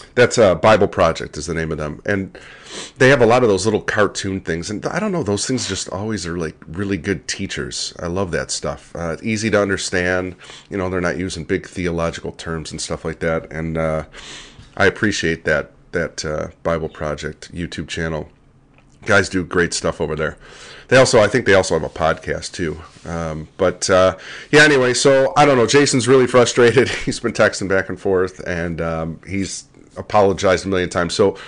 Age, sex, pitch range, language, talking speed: 40-59, male, 85-105 Hz, English, 205 wpm